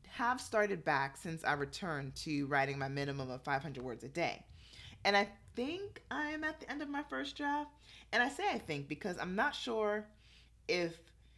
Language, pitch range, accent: English, 140-185 Hz, American